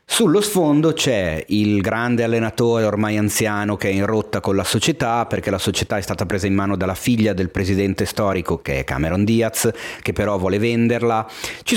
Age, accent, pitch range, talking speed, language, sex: 30-49, native, 85-115 Hz, 190 wpm, Italian, male